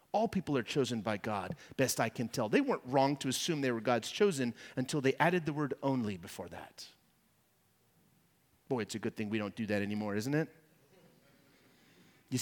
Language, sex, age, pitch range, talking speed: English, male, 30-49, 120-160 Hz, 195 wpm